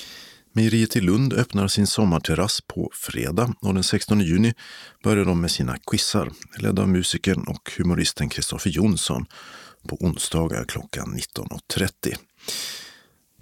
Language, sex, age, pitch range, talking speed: Swedish, male, 50-69, 85-110 Hz, 125 wpm